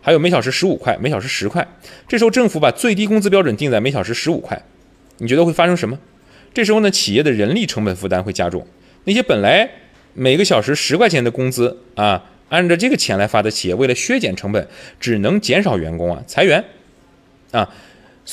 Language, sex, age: Chinese, male, 30-49